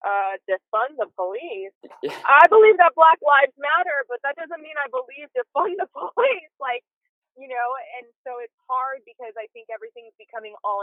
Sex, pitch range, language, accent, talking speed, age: female, 200-260 Hz, English, American, 175 wpm, 20-39